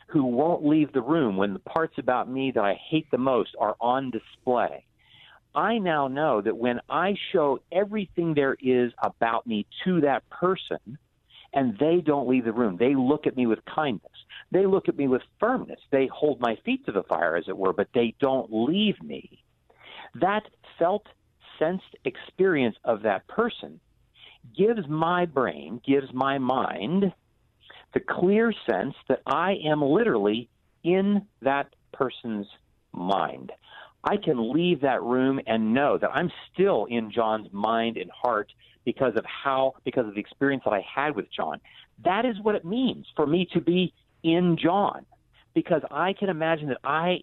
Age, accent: 50-69, American